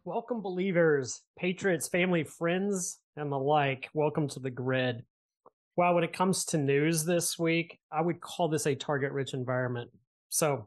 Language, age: English, 30-49